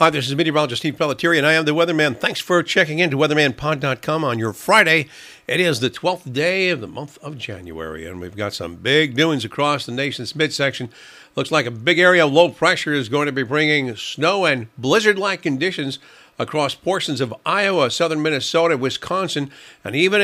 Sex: male